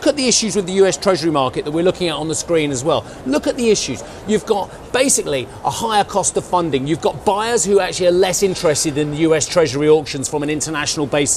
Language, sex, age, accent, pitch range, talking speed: English, male, 40-59, British, 150-200 Hz, 240 wpm